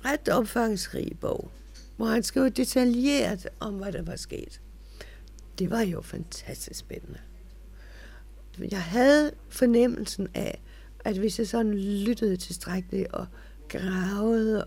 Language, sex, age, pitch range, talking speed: Danish, female, 60-79, 190-235 Hz, 115 wpm